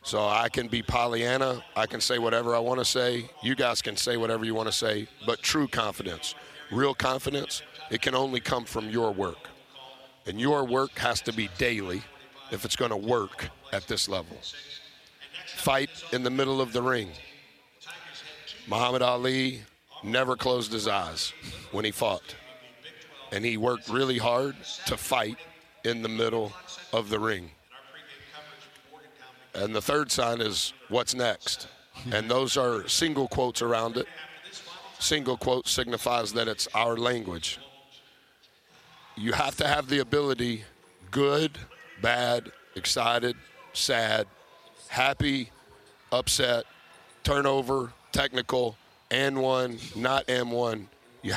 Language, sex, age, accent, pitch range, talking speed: English, male, 50-69, American, 115-135 Hz, 140 wpm